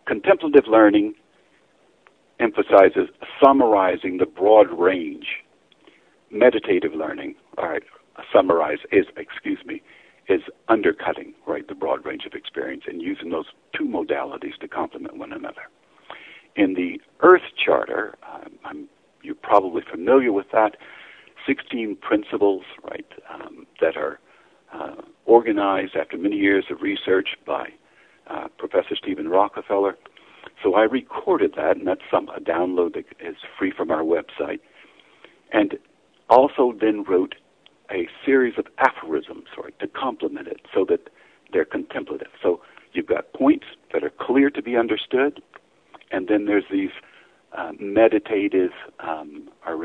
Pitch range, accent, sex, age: 295-400 Hz, American, male, 60-79